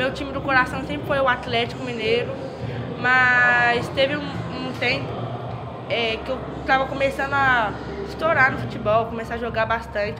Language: Portuguese